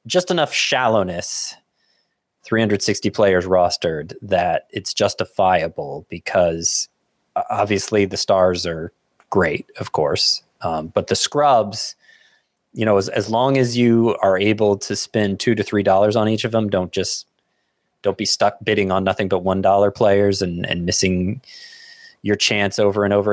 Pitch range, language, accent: 95-110 Hz, English, American